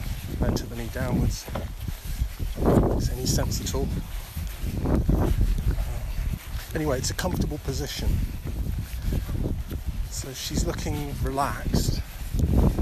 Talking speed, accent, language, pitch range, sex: 90 wpm, British, English, 85-125 Hz, male